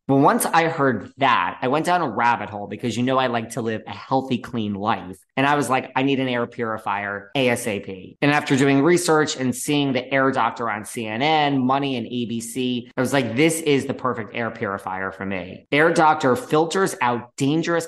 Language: English